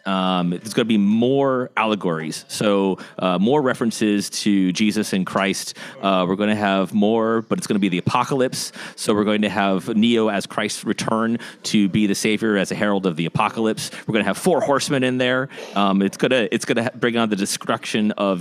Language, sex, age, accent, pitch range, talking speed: English, male, 30-49, American, 95-115 Hz, 215 wpm